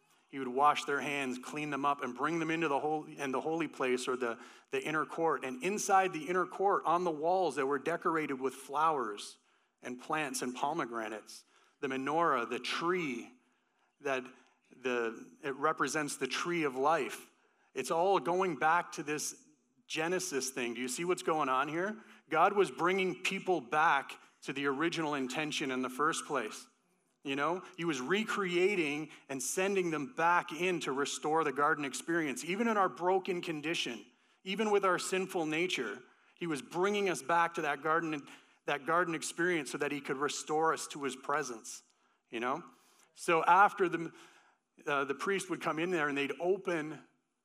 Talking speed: 175 wpm